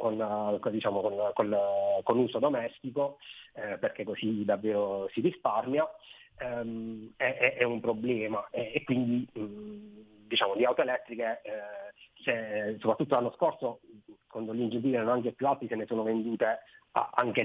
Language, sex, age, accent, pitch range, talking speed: Italian, male, 30-49, native, 110-120 Hz, 135 wpm